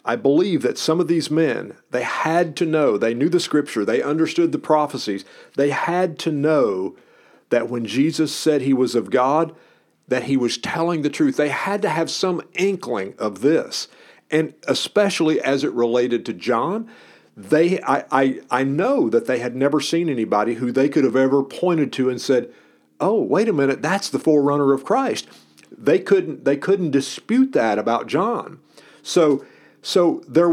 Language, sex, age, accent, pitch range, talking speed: English, male, 50-69, American, 130-175 Hz, 180 wpm